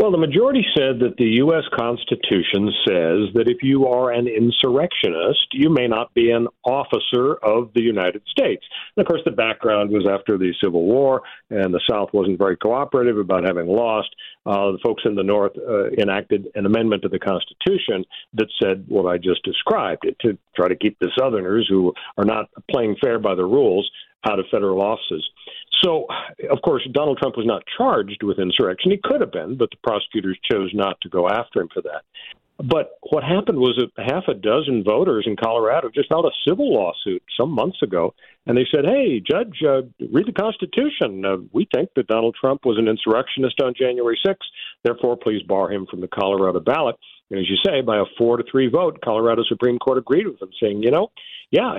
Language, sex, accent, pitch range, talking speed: English, male, American, 100-135 Hz, 205 wpm